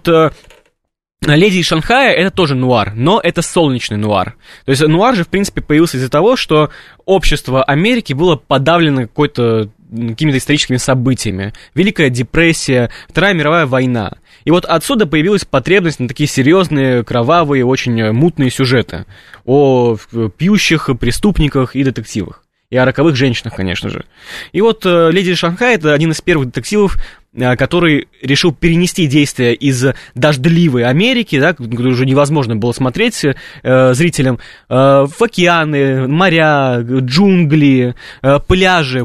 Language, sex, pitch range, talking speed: Russian, male, 130-175 Hz, 135 wpm